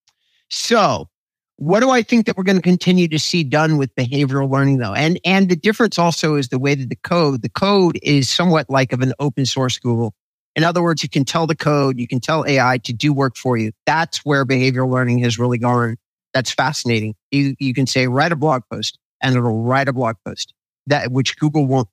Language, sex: English, male